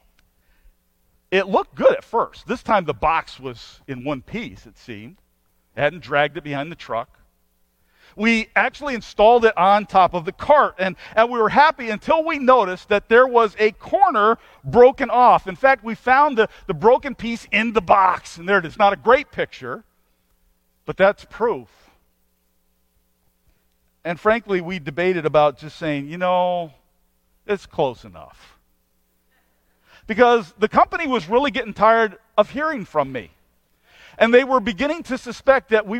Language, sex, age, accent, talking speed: English, male, 50-69, American, 165 wpm